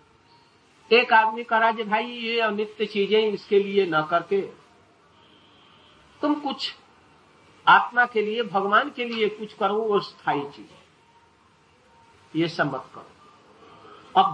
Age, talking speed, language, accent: 50-69, 115 wpm, Hindi, native